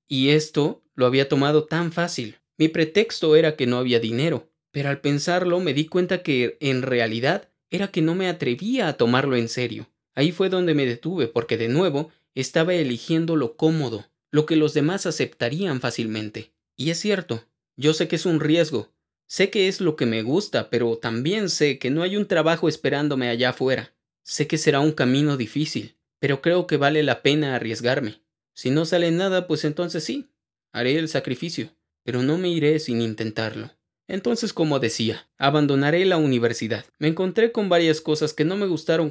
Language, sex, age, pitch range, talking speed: Spanish, male, 30-49, 125-170 Hz, 185 wpm